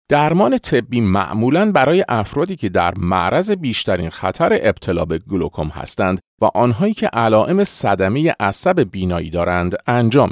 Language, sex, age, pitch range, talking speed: Persian, male, 40-59, 95-150 Hz, 135 wpm